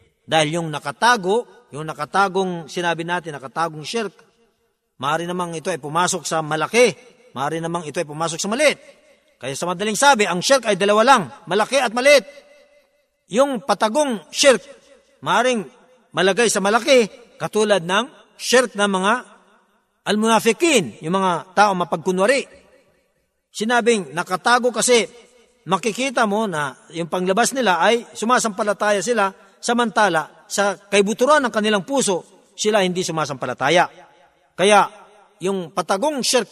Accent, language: native, Filipino